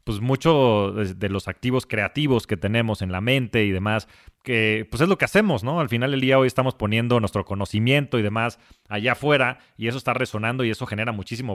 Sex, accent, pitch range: male, Mexican, 105-130 Hz